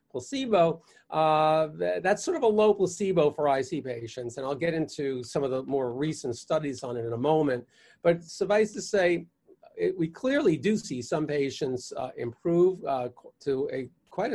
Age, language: 40-59, English